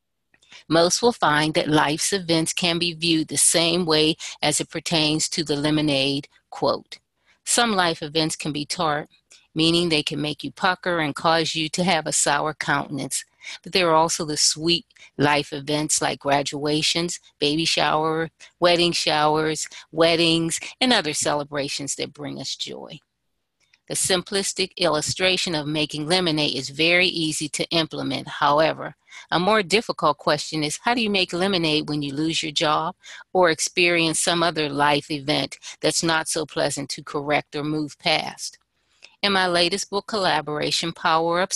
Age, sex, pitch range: 40-59, female, 150-175 Hz